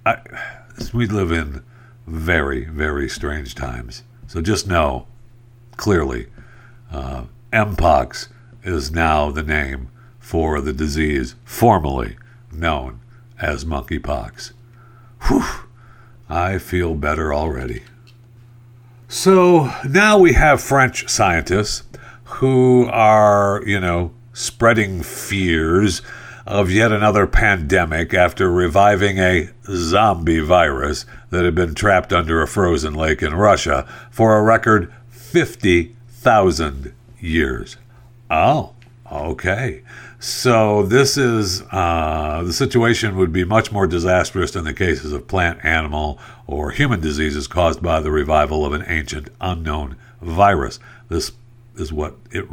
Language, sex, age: English, male, 60-79